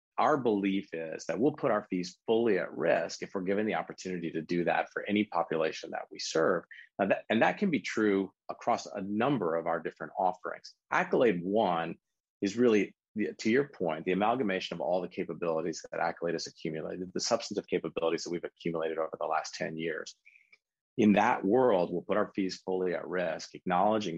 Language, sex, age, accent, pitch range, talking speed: English, male, 40-59, American, 85-105 Hz, 190 wpm